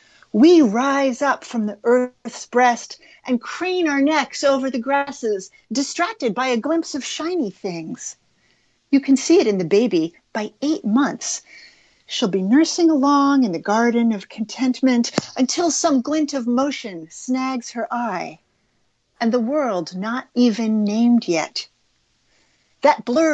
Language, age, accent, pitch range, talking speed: English, 40-59, American, 210-285 Hz, 145 wpm